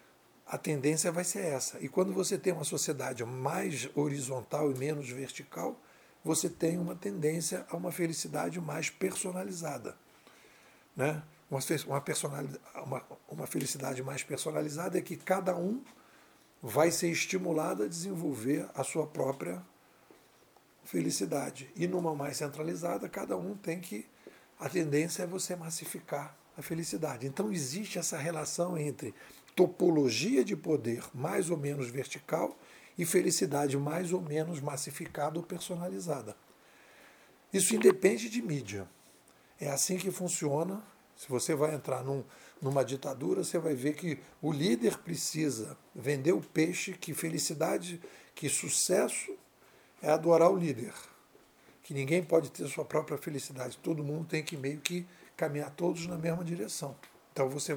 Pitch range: 145-175 Hz